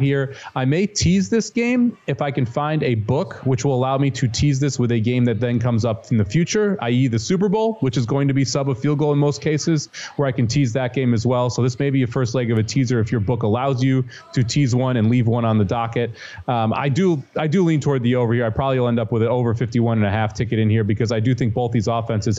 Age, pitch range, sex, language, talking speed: 30-49, 115-140 Hz, male, English, 290 wpm